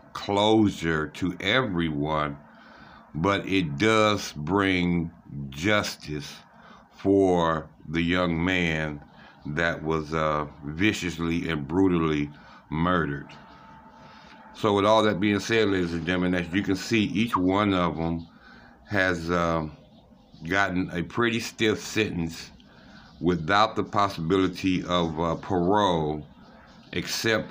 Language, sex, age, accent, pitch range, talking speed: English, male, 60-79, American, 85-105 Hz, 110 wpm